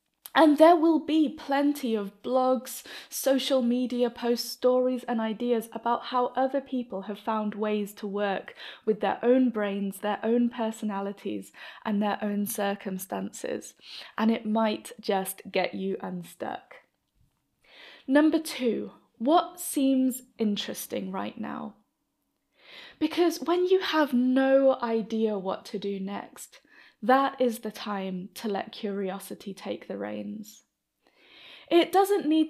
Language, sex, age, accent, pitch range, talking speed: English, female, 10-29, British, 210-270 Hz, 130 wpm